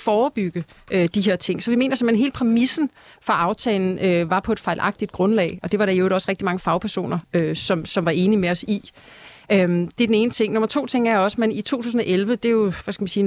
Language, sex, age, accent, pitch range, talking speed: Danish, female, 30-49, native, 195-235 Hz, 240 wpm